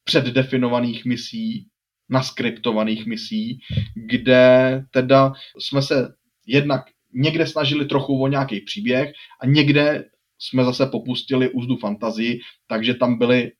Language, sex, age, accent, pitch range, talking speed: Czech, male, 20-39, native, 120-135 Hz, 110 wpm